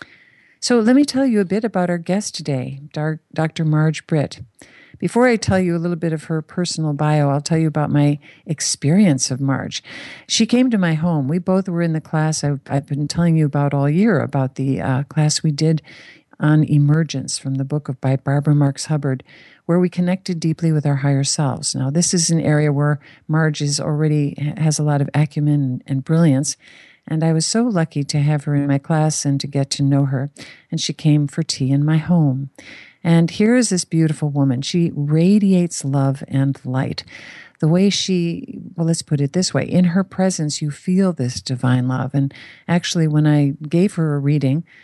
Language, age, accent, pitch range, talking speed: English, 50-69, American, 140-170 Hz, 200 wpm